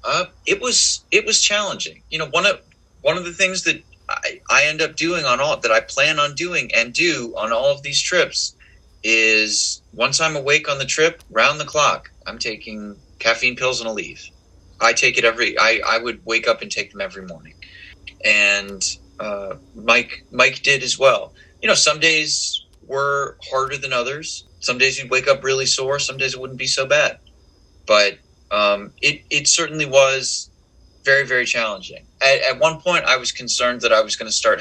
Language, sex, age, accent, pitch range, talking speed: English, male, 30-49, American, 100-140 Hz, 200 wpm